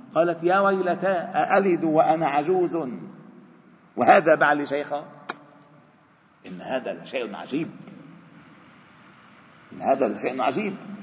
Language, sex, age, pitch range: Arabic, male, 50-69, 145-210 Hz